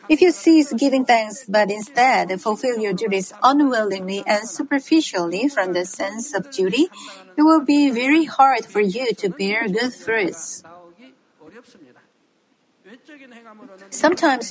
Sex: female